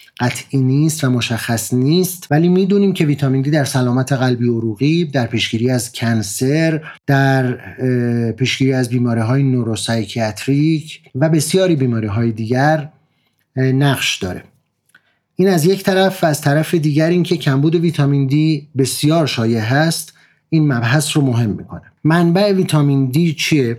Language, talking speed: Persian, 135 wpm